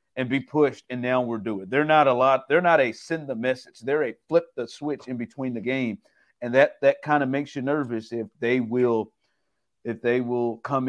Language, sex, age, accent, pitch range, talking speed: English, male, 50-69, American, 115-130 Hz, 225 wpm